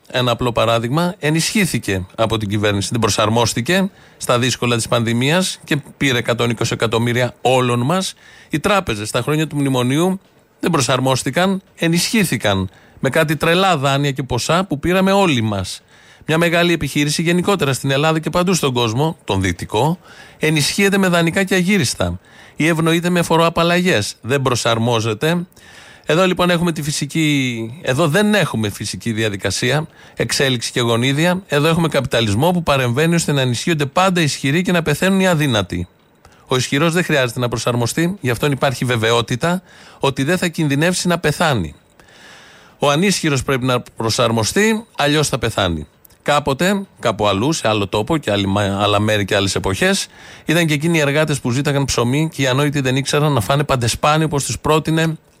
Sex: male